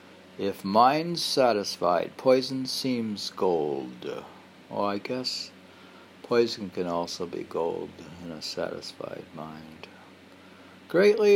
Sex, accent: male, American